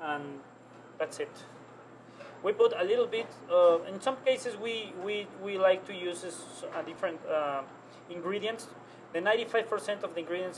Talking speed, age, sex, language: 160 wpm, 30-49, male, English